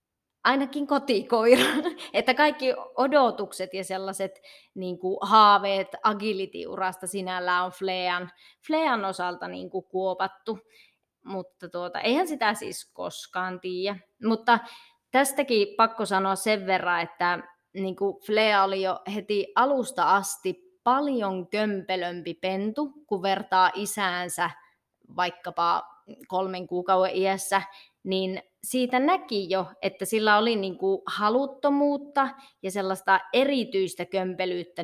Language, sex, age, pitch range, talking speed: Finnish, female, 20-39, 185-225 Hz, 105 wpm